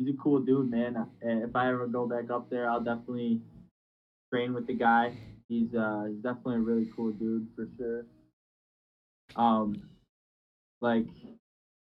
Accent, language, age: American, English, 10-29